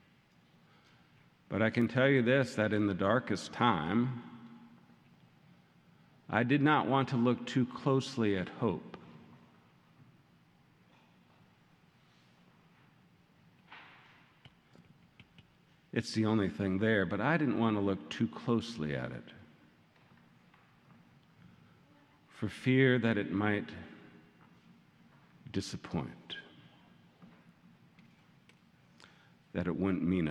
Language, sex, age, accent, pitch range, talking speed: English, male, 50-69, American, 90-130 Hz, 90 wpm